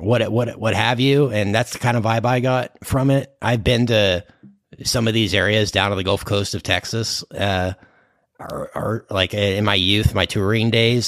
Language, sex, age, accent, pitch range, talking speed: English, male, 30-49, American, 100-120 Hz, 210 wpm